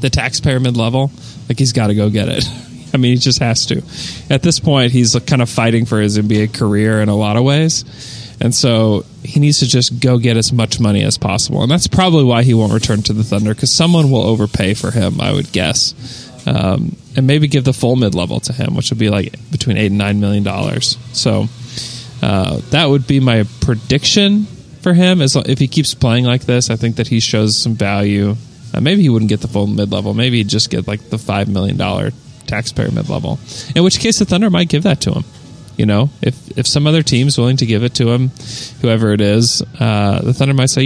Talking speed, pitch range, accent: 230 wpm, 105-135 Hz, American